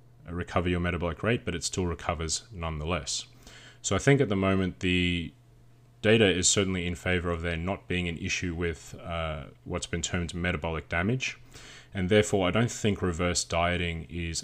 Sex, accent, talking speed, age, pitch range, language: male, Australian, 175 wpm, 20-39, 85-110 Hz, English